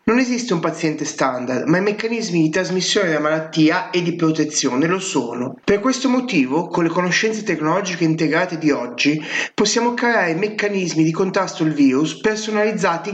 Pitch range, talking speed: 155-215 Hz, 160 wpm